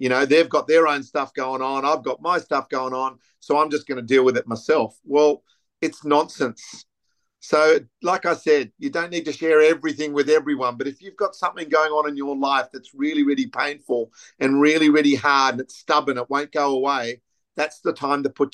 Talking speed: 225 wpm